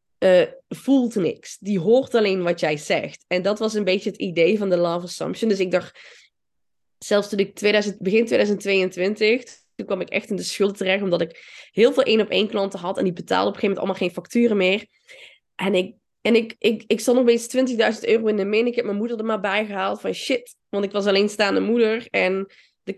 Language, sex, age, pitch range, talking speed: Dutch, female, 20-39, 195-235 Hz, 225 wpm